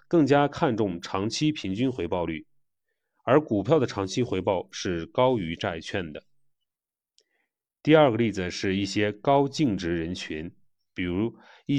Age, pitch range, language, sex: 30-49, 95-135 Hz, Chinese, male